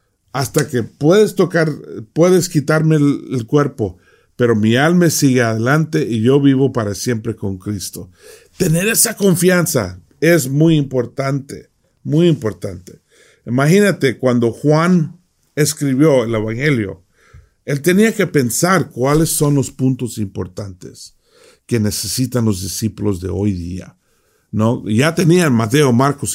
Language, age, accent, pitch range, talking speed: English, 50-69, Mexican, 110-150 Hz, 125 wpm